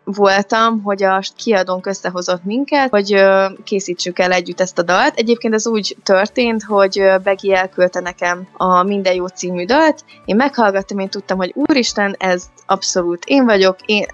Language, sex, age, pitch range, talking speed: Hungarian, female, 20-39, 190-230 Hz, 155 wpm